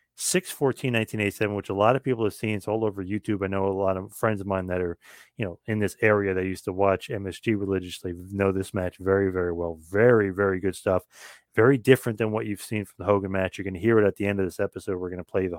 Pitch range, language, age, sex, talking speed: 95-110 Hz, English, 30-49, male, 275 wpm